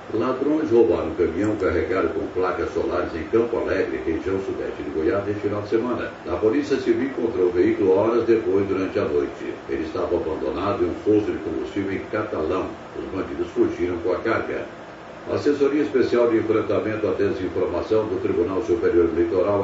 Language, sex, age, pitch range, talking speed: Portuguese, male, 70-89, 340-400 Hz, 175 wpm